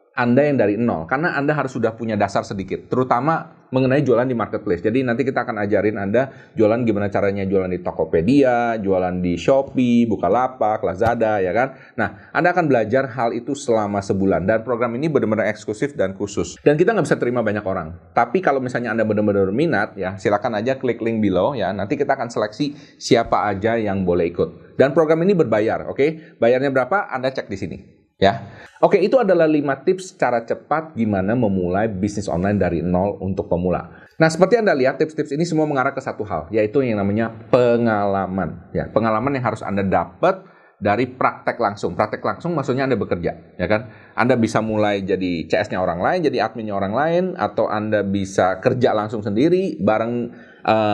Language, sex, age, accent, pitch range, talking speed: Indonesian, male, 30-49, native, 100-140 Hz, 185 wpm